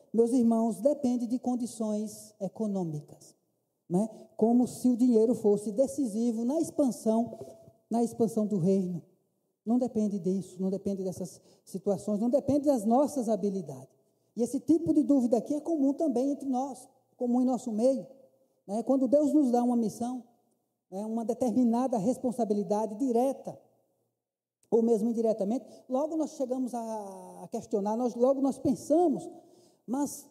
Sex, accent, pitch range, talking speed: male, Brazilian, 210-270 Hz, 140 wpm